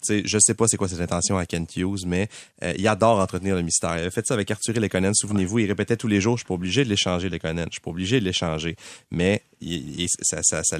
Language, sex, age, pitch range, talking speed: French, male, 30-49, 90-110 Hz, 295 wpm